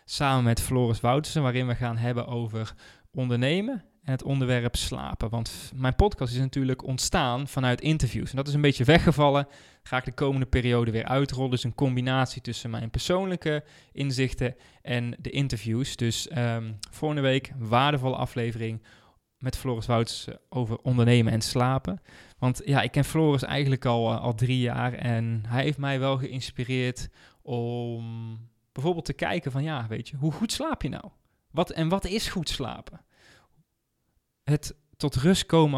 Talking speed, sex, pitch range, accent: 165 wpm, male, 120-140 Hz, Dutch